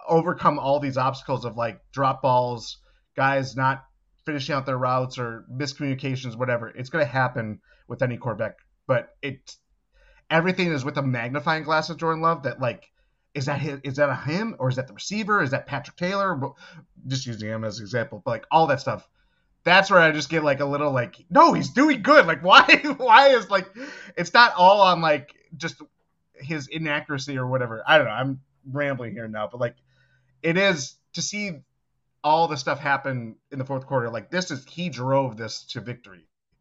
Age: 30-49